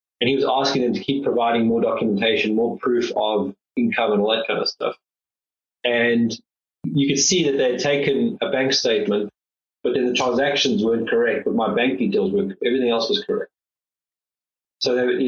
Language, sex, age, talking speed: English, male, 20-39, 190 wpm